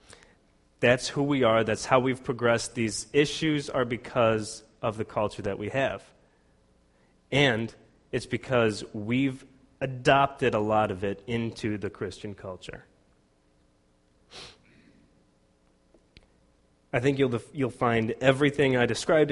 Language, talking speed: English, 125 wpm